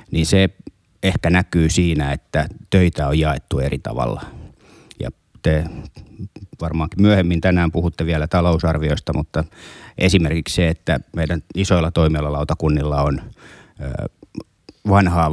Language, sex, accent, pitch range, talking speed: Finnish, male, native, 80-90 Hz, 110 wpm